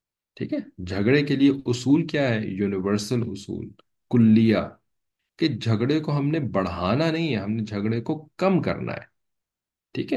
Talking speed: 160 wpm